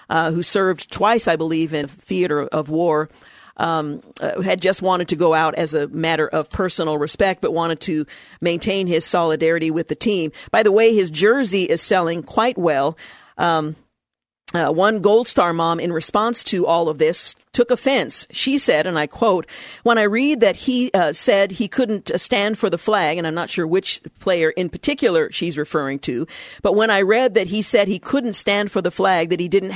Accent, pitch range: American, 165-210 Hz